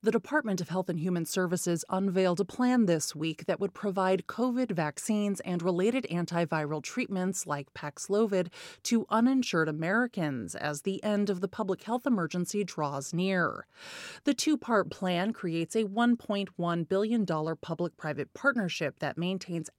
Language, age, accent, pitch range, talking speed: English, 30-49, American, 165-225 Hz, 145 wpm